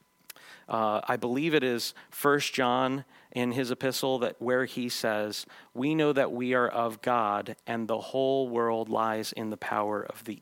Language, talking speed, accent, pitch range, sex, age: English, 180 wpm, American, 115-140 Hz, male, 40-59